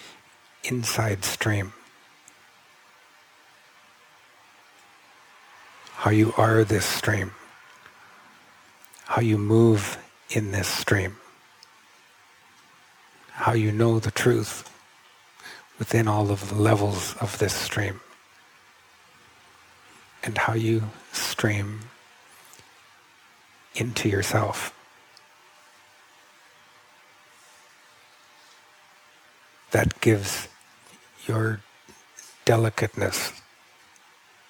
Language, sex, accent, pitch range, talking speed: English, male, American, 100-115 Hz, 65 wpm